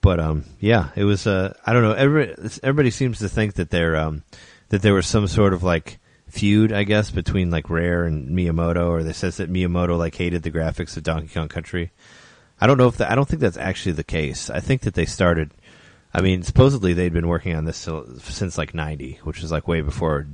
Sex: male